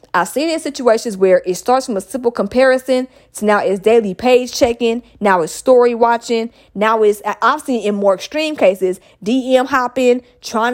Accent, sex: American, female